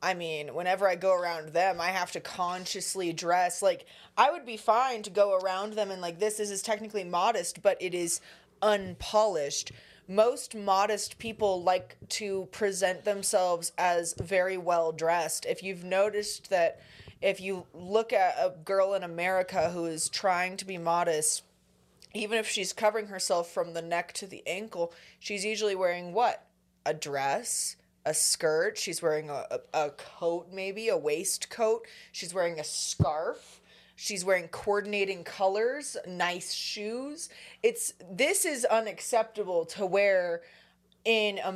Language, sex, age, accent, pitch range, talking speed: English, female, 20-39, American, 170-210 Hz, 155 wpm